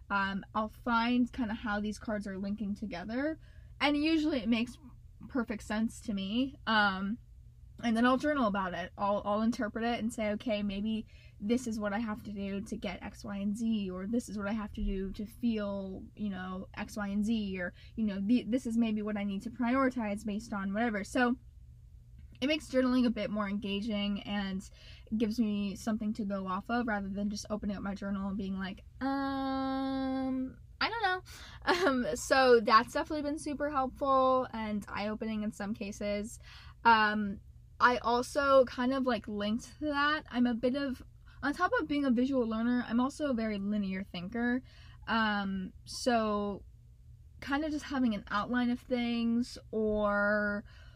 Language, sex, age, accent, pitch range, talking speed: English, female, 10-29, American, 205-250 Hz, 185 wpm